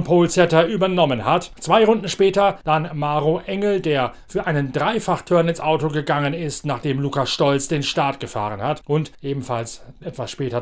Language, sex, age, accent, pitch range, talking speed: German, male, 40-59, German, 145-185 Hz, 160 wpm